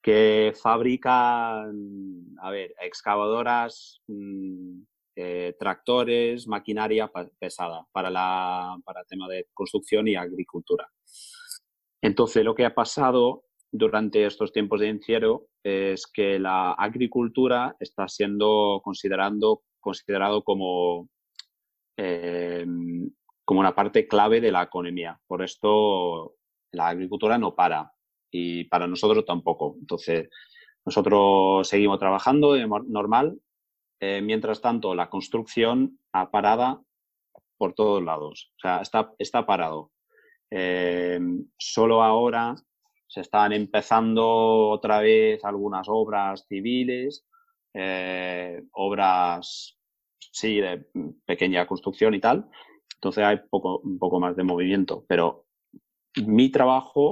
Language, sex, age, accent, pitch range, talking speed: Spanish, male, 30-49, Spanish, 90-120 Hz, 105 wpm